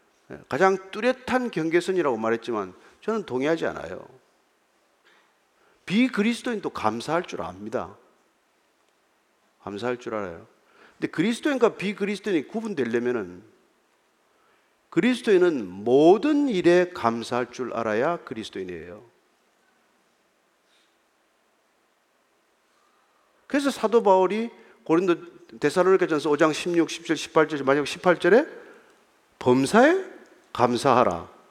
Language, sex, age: Korean, male, 40-59